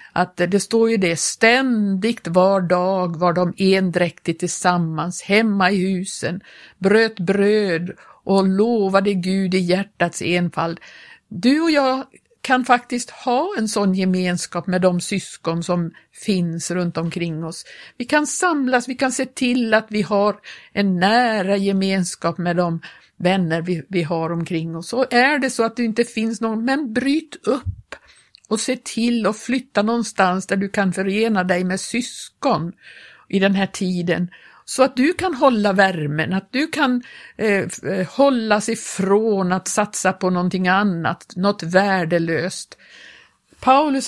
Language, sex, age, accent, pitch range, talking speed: Swedish, female, 50-69, native, 180-225 Hz, 150 wpm